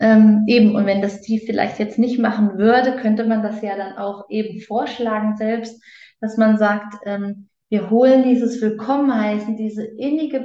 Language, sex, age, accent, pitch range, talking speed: German, female, 30-49, German, 215-255 Hz, 170 wpm